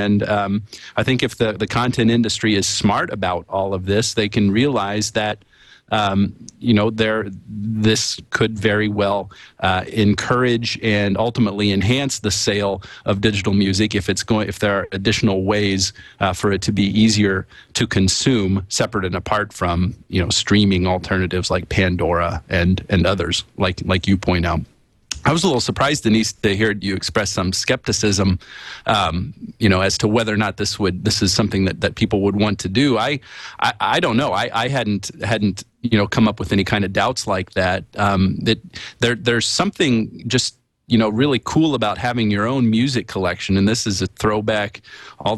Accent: American